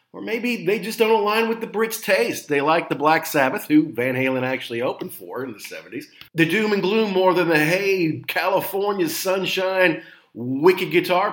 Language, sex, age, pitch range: English, male, 40-59, 130-180 Hz